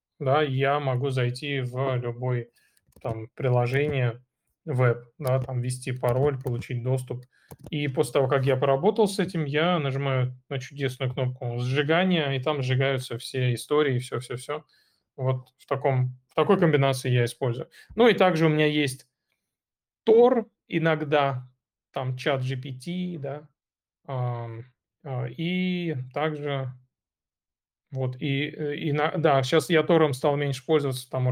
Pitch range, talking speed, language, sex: 125-150 Hz, 130 wpm, Russian, male